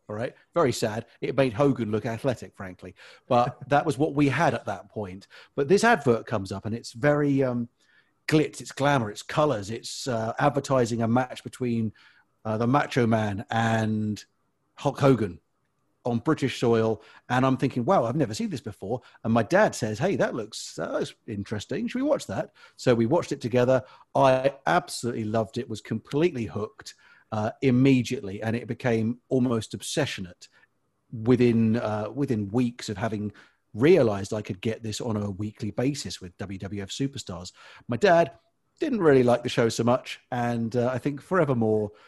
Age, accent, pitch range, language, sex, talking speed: 40-59, British, 105-130 Hz, English, male, 175 wpm